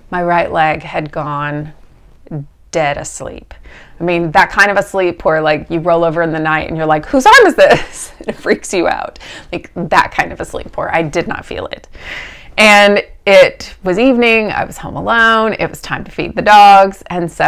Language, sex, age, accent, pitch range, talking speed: English, female, 30-49, American, 160-235 Hz, 215 wpm